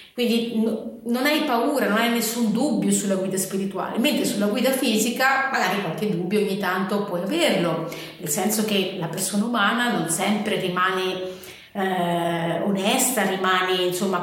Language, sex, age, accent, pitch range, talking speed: Italian, female, 30-49, native, 190-230 Hz, 150 wpm